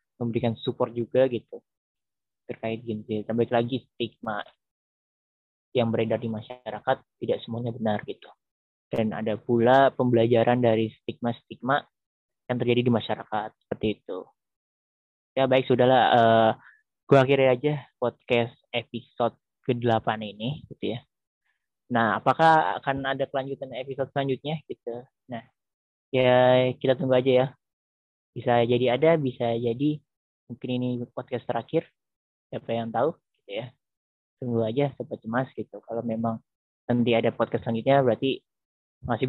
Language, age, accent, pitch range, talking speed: Indonesian, 20-39, native, 115-130 Hz, 125 wpm